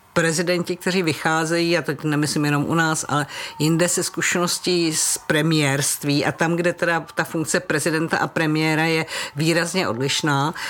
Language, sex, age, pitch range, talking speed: Czech, female, 50-69, 155-180 Hz, 150 wpm